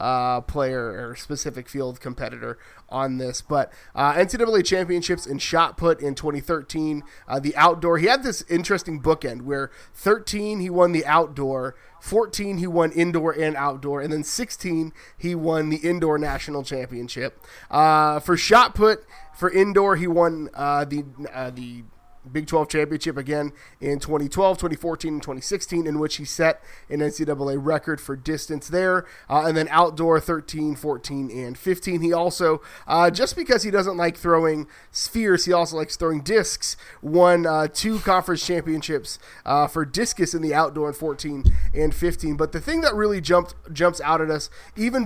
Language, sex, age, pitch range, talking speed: English, male, 30-49, 150-175 Hz, 170 wpm